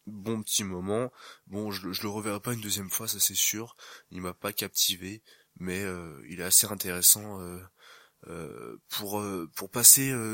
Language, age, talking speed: French, 20-39, 180 wpm